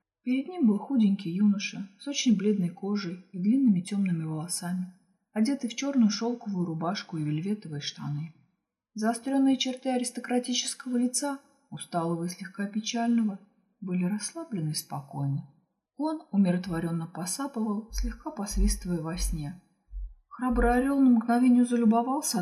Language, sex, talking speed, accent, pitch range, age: Russian, female, 120 wpm, native, 160-210 Hz, 30-49